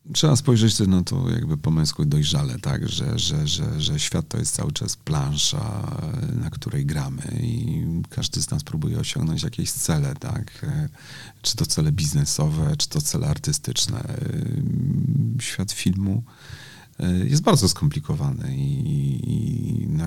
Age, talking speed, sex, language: 40-59, 140 wpm, male, Polish